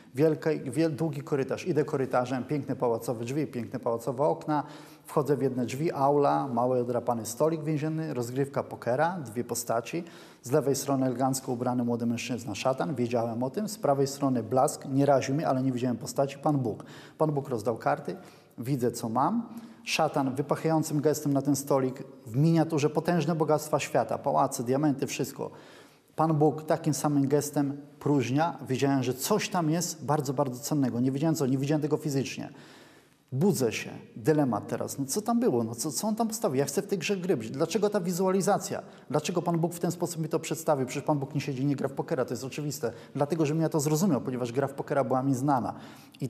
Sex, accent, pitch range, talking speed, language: male, native, 130-160 Hz, 195 wpm, Polish